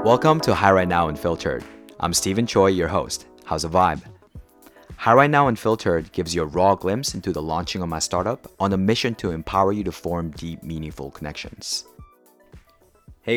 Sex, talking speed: male, 185 wpm